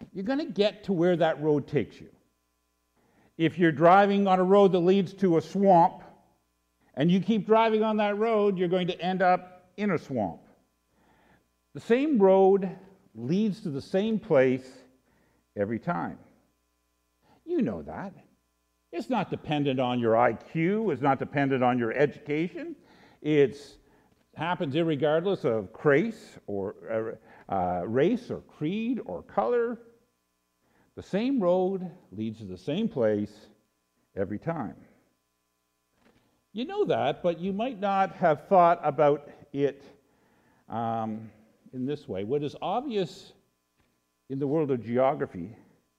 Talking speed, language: 140 wpm, English